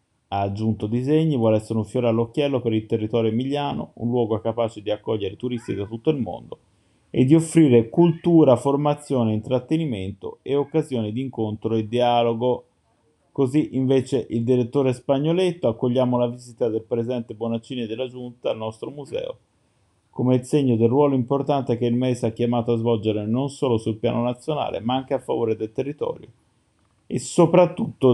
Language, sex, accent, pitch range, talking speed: Italian, male, native, 115-135 Hz, 160 wpm